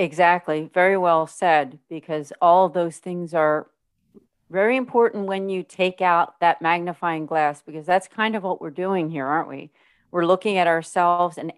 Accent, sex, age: American, female, 40-59